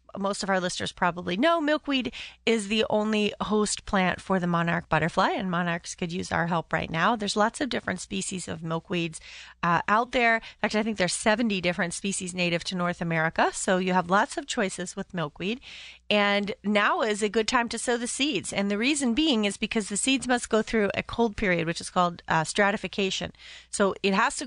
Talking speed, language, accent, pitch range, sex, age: 215 wpm, English, American, 185-245 Hz, female, 30-49